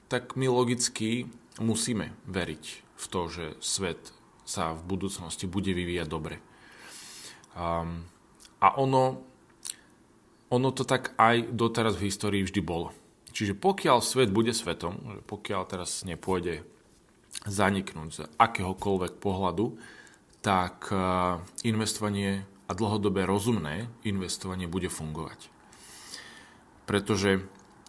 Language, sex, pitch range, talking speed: Slovak, male, 90-115 Hz, 105 wpm